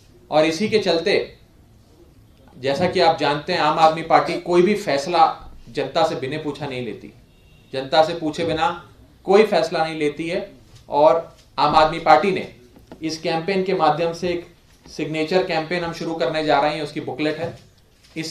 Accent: native